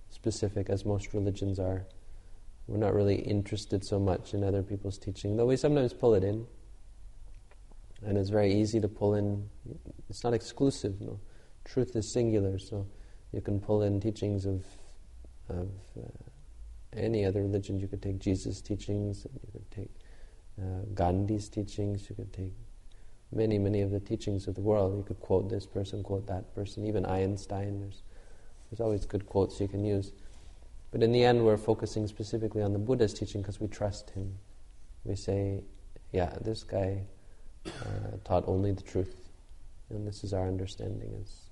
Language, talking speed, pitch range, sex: English, 170 wpm, 95-105 Hz, male